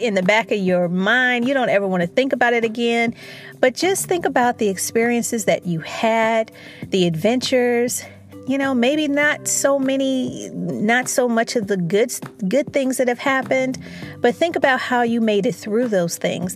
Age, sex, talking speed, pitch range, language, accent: 40-59, female, 190 wpm, 190-250 Hz, English, American